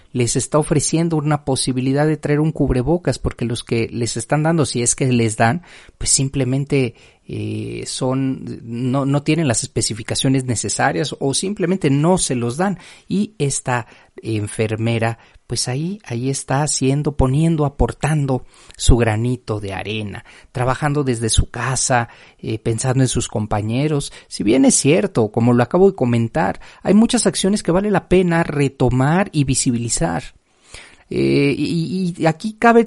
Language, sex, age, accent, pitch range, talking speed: Spanish, male, 40-59, Mexican, 120-165 Hz, 150 wpm